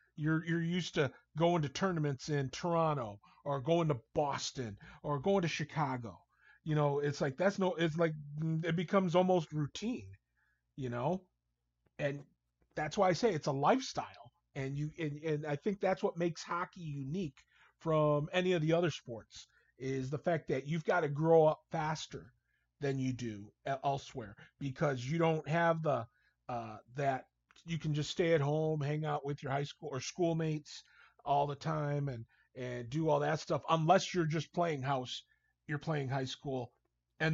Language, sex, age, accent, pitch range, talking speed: English, male, 40-59, American, 140-170 Hz, 175 wpm